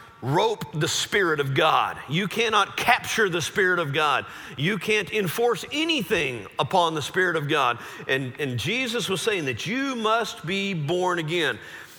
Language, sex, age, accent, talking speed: English, male, 40-59, American, 160 wpm